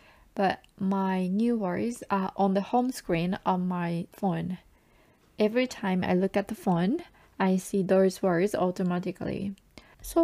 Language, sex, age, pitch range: Japanese, female, 20-39, 175-205 Hz